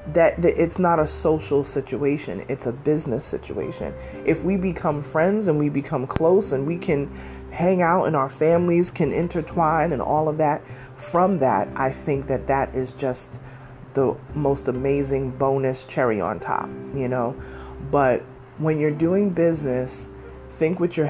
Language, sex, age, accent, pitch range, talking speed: English, female, 30-49, American, 125-155 Hz, 160 wpm